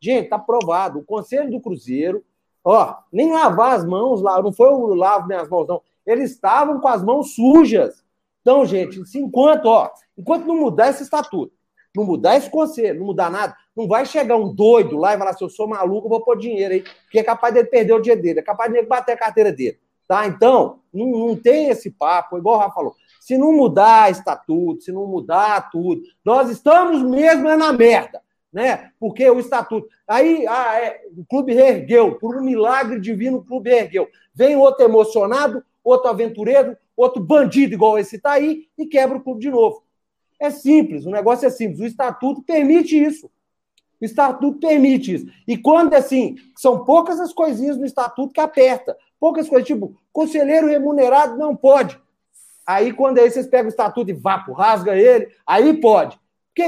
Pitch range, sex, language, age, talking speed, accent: 225-295 Hz, male, Portuguese, 40-59, 190 wpm, Brazilian